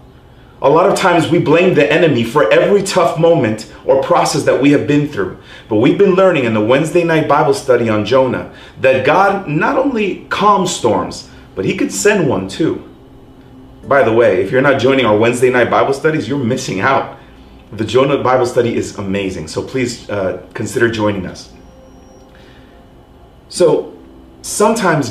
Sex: male